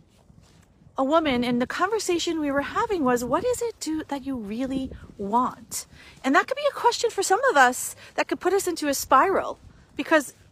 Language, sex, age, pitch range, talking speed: English, female, 40-59, 250-330 Hz, 200 wpm